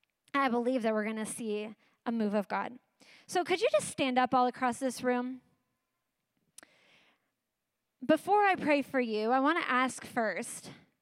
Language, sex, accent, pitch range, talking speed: English, female, American, 245-295 Hz, 170 wpm